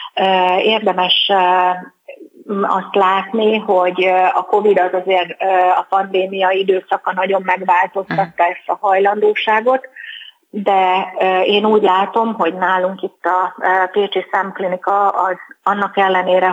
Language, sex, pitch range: Hungarian, female, 185-205 Hz